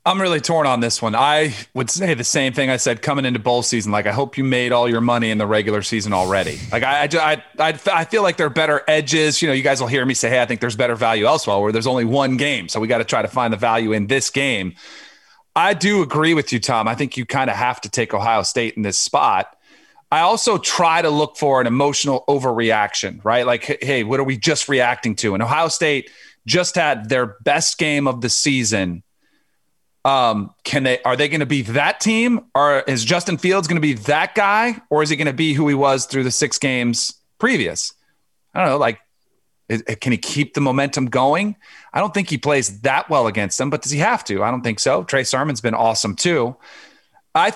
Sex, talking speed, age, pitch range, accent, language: male, 240 wpm, 40-59, 120-155 Hz, American, English